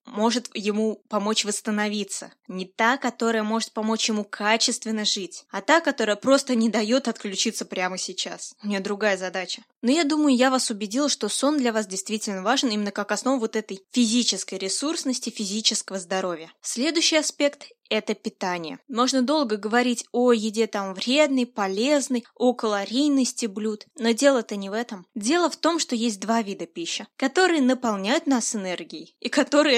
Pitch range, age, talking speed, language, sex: 210-265 Hz, 20-39, 165 wpm, Russian, female